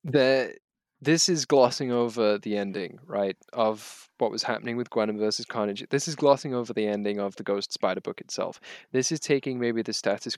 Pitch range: 105-130 Hz